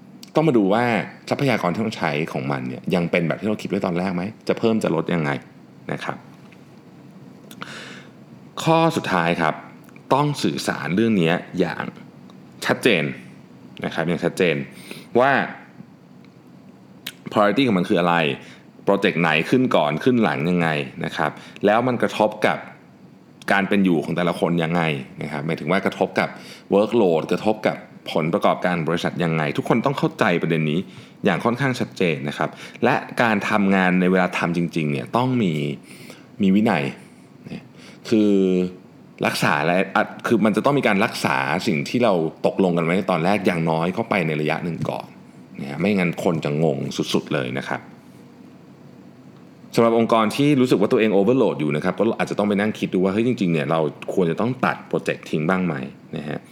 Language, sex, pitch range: Thai, male, 80-110 Hz